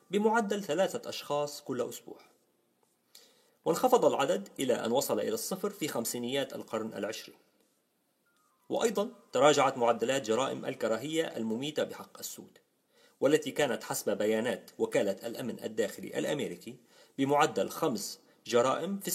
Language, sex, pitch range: English, male, 120-200 Hz